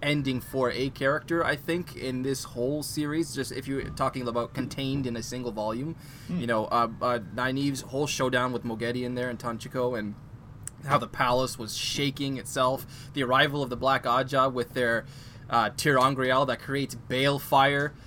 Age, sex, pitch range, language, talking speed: 20-39, male, 120-140 Hz, English, 175 wpm